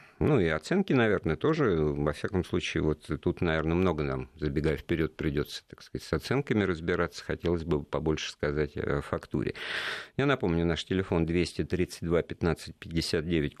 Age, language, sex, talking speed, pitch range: 50-69, Russian, male, 140 wpm, 75-95 Hz